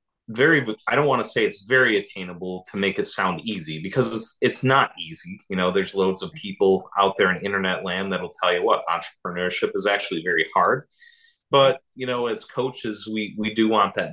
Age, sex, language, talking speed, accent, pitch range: 30-49, male, English, 210 wpm, American, 95-130 Hz